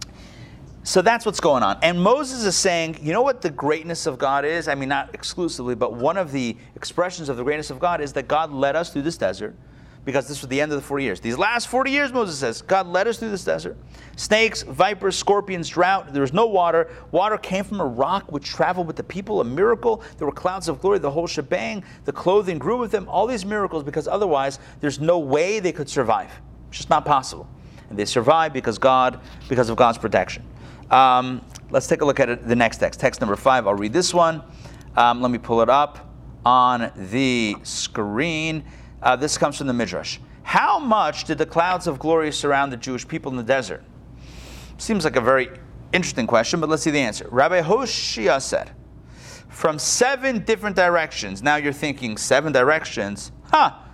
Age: 40-59